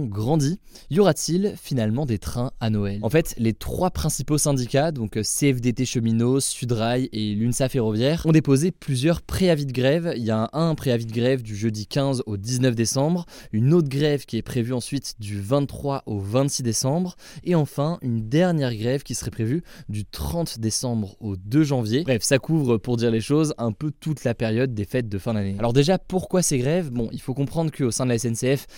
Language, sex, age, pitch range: French, male, 20-39, 115-140 Hz